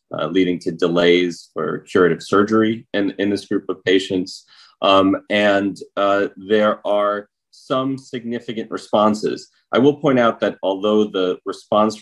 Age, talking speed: 30-49, 145 wpm